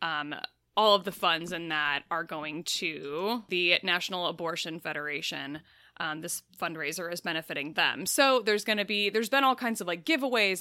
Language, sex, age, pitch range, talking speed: English, female, 20-39, 170-230 Hz, 180 wpm